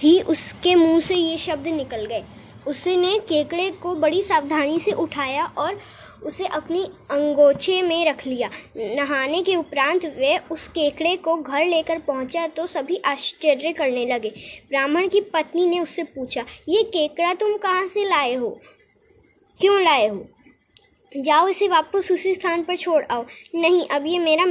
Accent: native